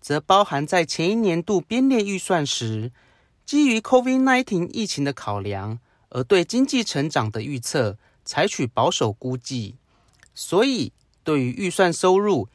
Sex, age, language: male, 30-49, Chinese